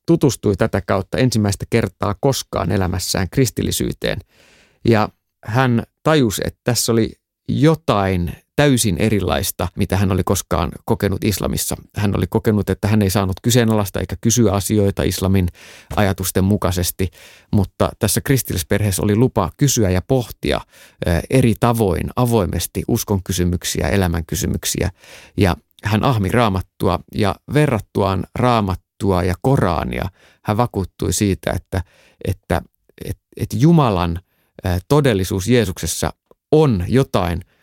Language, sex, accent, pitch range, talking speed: Finnish, male, native, 95-120 Hz, 115 wpm